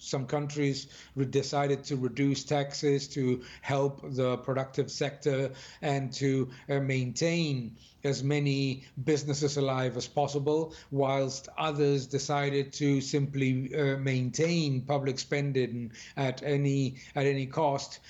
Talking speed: 110 wpm